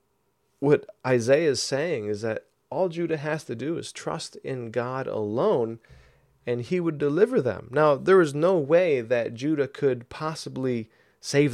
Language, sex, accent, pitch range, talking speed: English, male, American, 120-165 Hz, 160 wpm